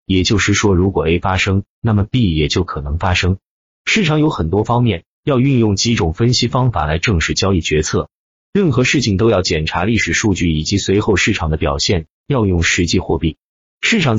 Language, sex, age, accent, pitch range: Chinese, male, 30-49, native, 85-120 Hz